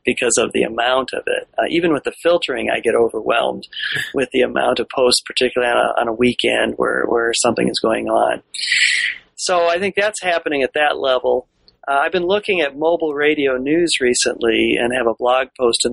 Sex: male